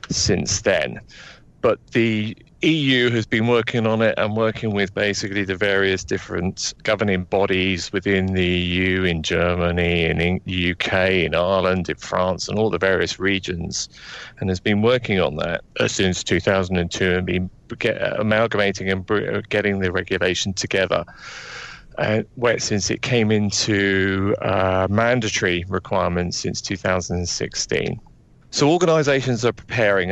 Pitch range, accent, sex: 90-110 Hz, British, male